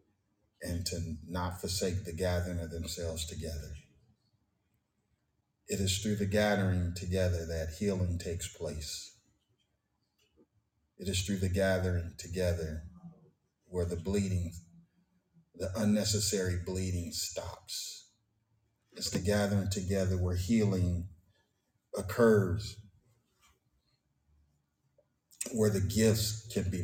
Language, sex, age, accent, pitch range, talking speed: English, male, 30-49, American, 85-105 Hz, 100 wpm